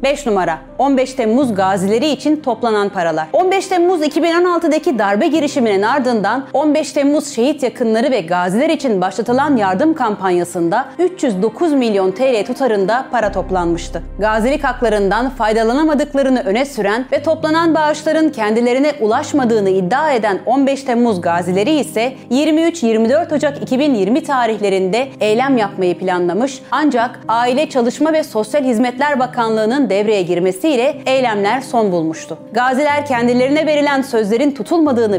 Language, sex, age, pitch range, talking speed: Turkish, female, 30-49, 210-295 Hz, 120 wpm